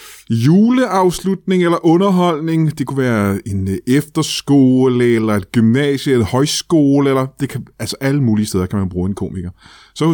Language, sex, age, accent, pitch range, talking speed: Danish, male, 30-49, native, 110-140 Hz, 165 wpm